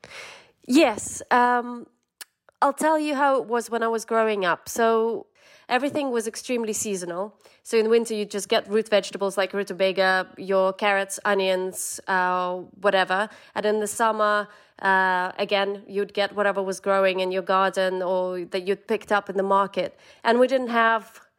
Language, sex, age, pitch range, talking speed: English, female, 30-49, 195-245 Hz, 170 wpm